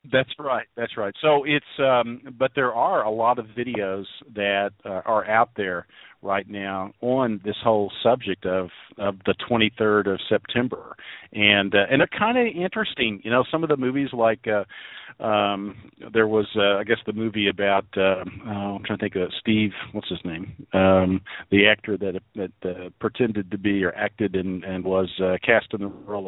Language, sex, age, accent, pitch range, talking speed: English, male, 50-69, American, 95-115 Hz, 195 wpm